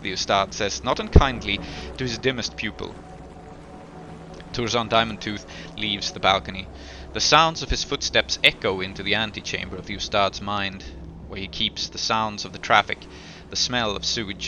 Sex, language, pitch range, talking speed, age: male, English, 95-120 Hz, 165 wpm, 30-49